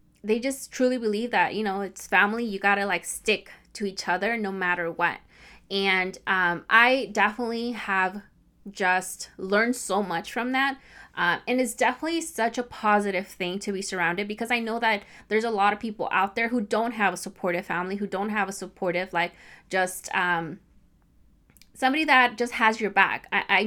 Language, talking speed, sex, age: English, 190 wpm, female, 20-39